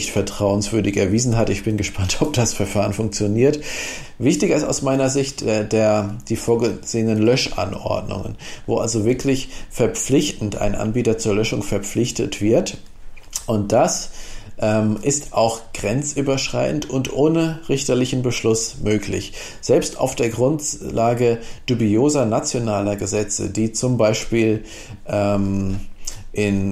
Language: German